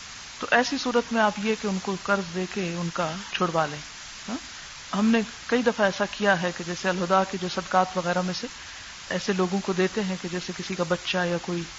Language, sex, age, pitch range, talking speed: Urdu, female, 50-69, 200-265 Hz, 225 wpm